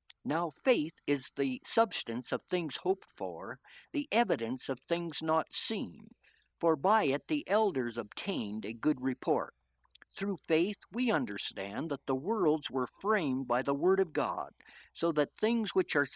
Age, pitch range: 60-79, 130-200 Hz